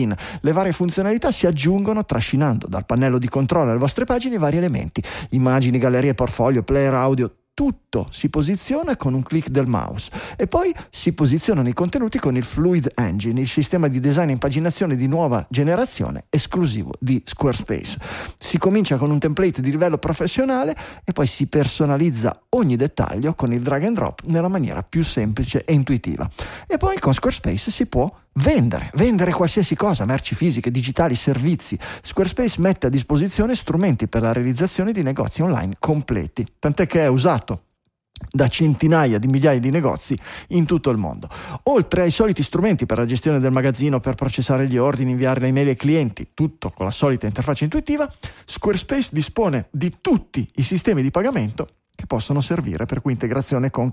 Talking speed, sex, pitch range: 170 wpm, male, 125-170 Hz